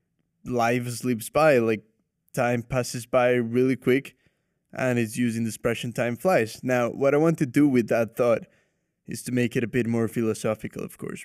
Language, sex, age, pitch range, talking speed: English, male, 20-39, 115-130 Hz, 185 wpm